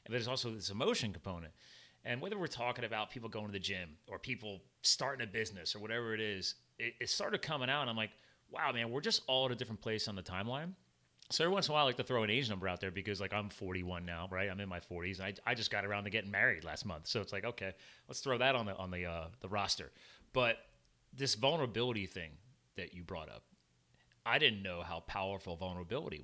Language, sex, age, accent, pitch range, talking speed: English, male, 30-49, American, 95-120 Hz, 245 wpm